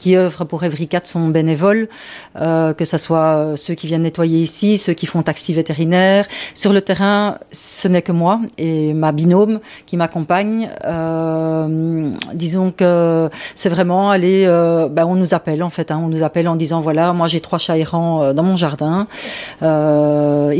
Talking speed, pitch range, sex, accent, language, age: 180 wpm, 155-180 Hz, female, French, French, 40-59